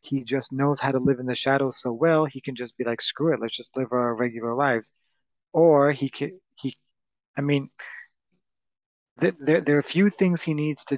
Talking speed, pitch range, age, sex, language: 215 wpm, 125-150 Hz, 30-49, male, English